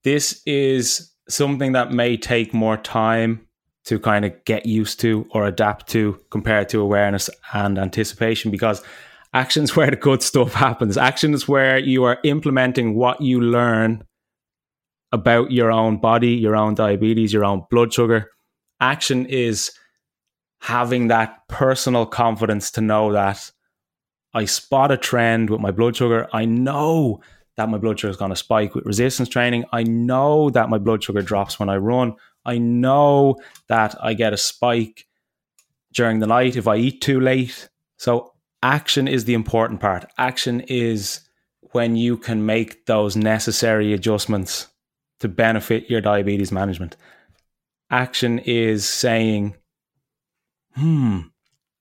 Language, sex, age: English, male, 20-39